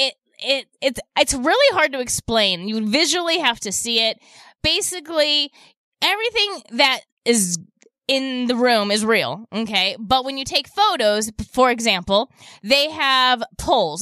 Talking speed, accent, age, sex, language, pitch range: 140 wpm, American, 20-39, female, English, 220-305 Hz